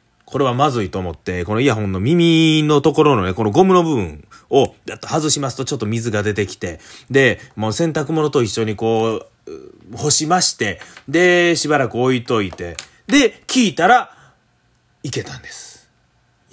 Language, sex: Japanese, male